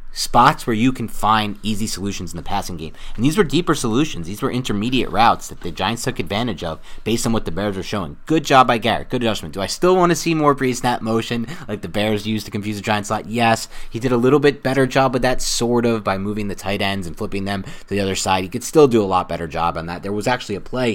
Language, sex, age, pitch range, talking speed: English, male, 30-49, 85-115 Hz, 275 wpm